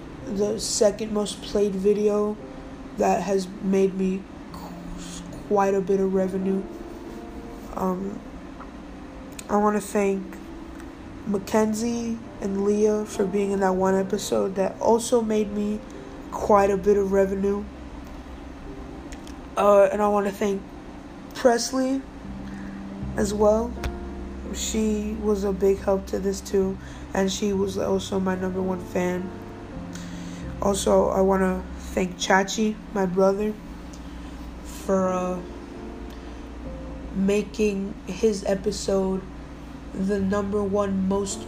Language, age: English, 20-39